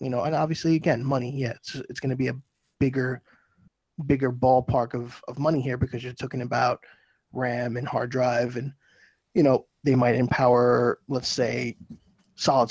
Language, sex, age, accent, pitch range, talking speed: English, male, 20-39, American, 120-140 Hz, 175 wpm